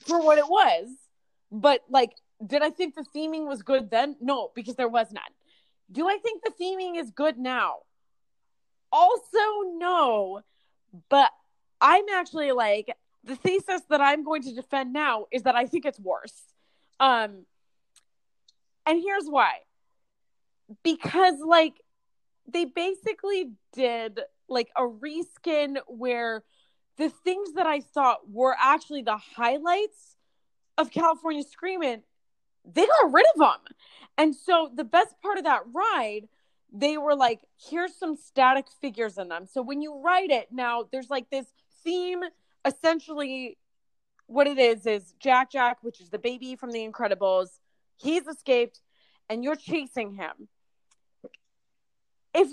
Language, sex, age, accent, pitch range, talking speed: English, female, 30-49, American, 245-340 Hz, 145 wpm